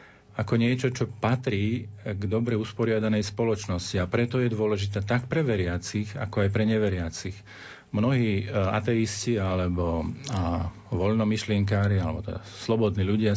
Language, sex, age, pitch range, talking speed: Slovak, male, 40-59, 95-110 Hz, 120 wpm